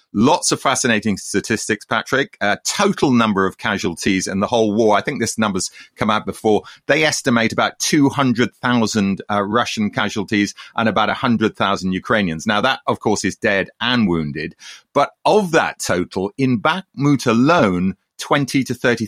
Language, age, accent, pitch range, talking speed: English, 40-59, British, 95-130 Hz, 160 wpm